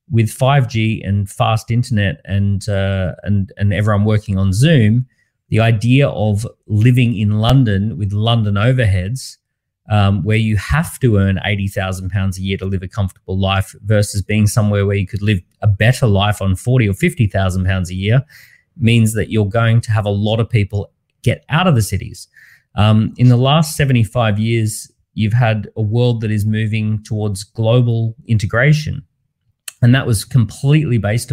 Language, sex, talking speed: English, male, 170 wpm